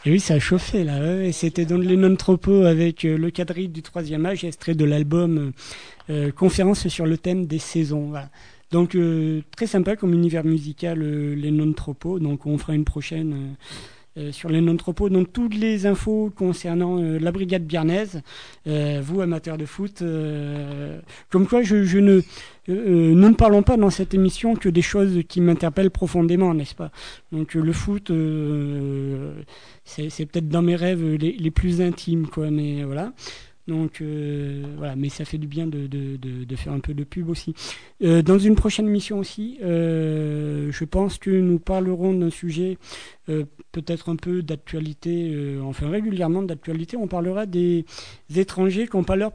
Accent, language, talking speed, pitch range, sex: French, French, 190 wpm, 150-185 Hz, male